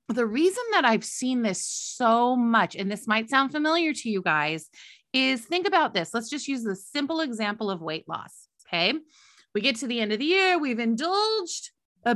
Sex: female